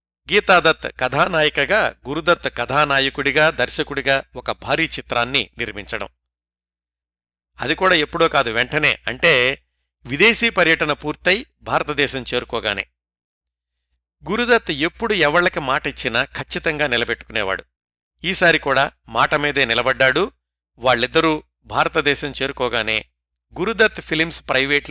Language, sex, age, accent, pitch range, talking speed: Telugu, male, 50-69, native, 100-160 Hz, 90 wpm